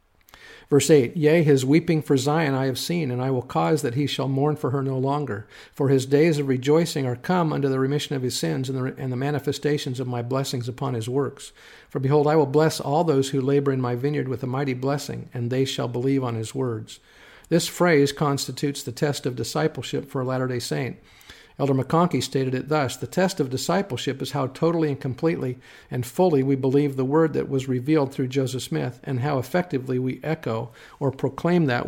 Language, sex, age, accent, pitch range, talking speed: English, male, 50-69, American, 125-150 Hz, 215 wpm